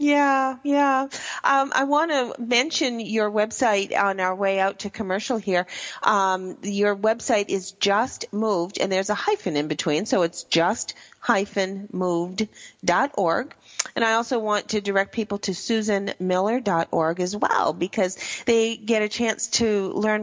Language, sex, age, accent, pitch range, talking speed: English, female, 40-59, American, 185-225 Hz, 145 wpm